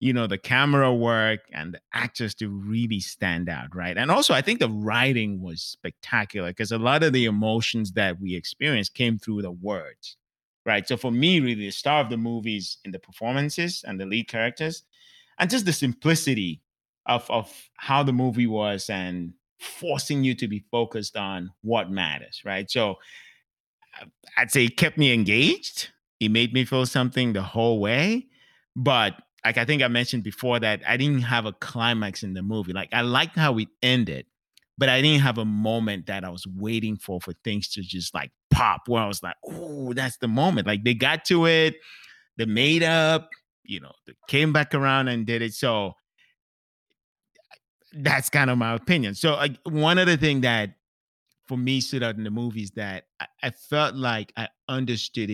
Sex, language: male, English